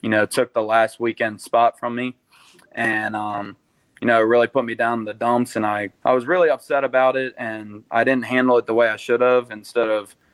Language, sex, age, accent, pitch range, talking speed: English, male, 20-39, American, 105-120 Hz, 230 wpm